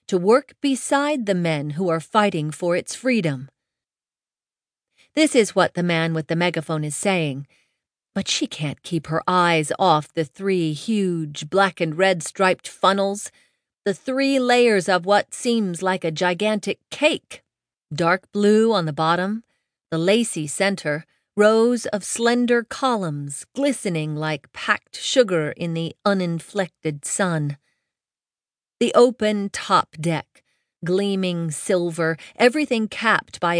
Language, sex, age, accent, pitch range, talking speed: English, female, 40-59, American, 165-220 Hz, 135 wpm